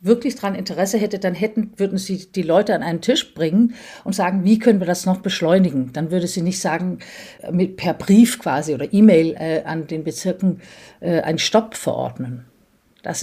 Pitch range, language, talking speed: 175-220 Hz, German, 190 wpm